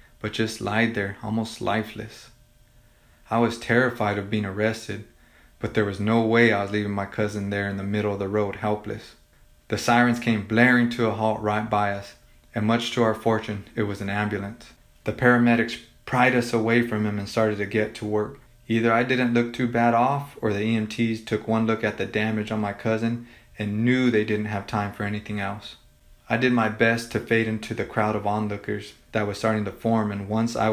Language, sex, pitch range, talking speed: English, male, 105-115 Hz, 215 wpm